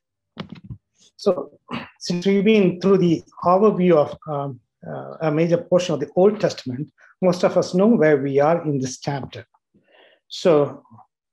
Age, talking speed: 50-69, 150 wpm